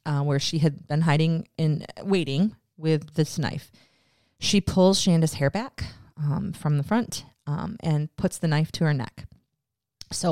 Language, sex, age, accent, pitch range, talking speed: English, female, 30-49, American, 145-175 Hz, 175 wpm